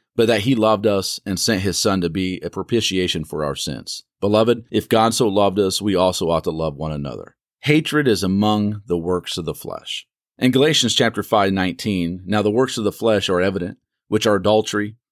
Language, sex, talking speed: English, male, 210 wpm